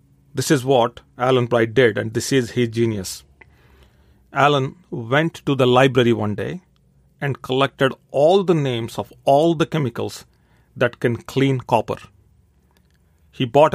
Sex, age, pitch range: male, 40-59, 120-140 Hz